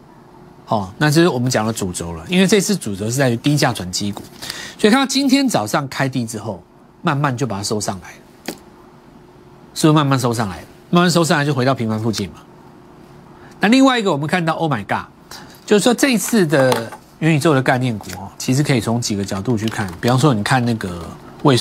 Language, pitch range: Chinese, 115-170 Hz